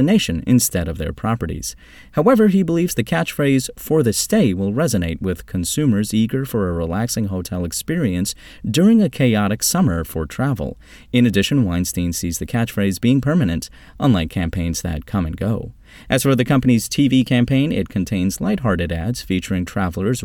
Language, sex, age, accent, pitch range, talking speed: English, male, 30-49, American, 90-125 Hz, 165 wpm